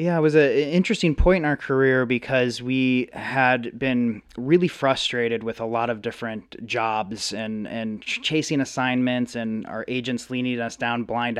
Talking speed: 180 wpm